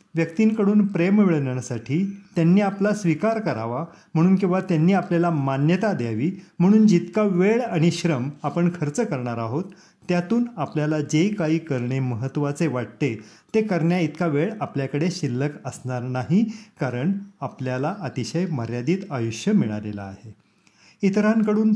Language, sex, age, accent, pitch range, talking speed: Marathi, male, 40-59, native, 135-195 Hz, 120 wpm